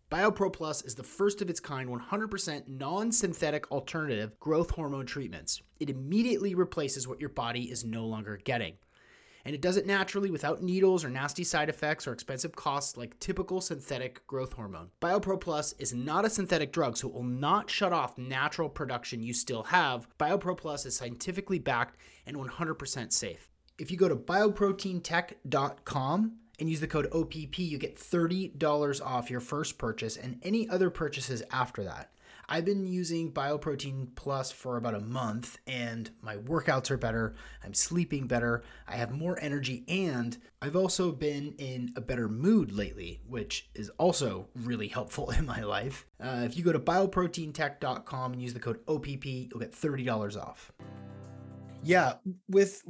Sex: male